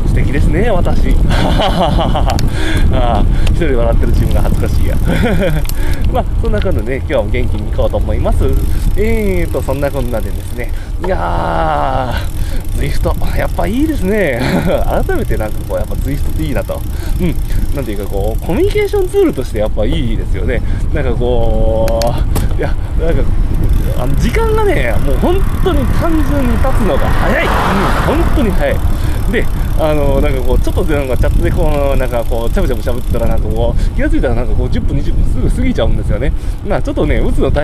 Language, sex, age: Japanese, male, 20-39